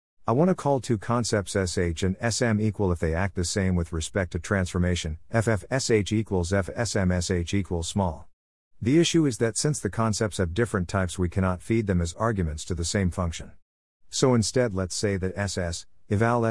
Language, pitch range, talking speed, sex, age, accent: English, 90-110 Hz, 190 wpm, male, 50-69, American